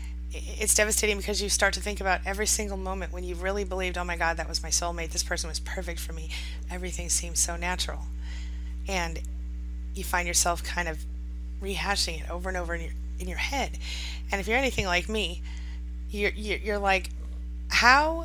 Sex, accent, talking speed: female, American, 195 wpm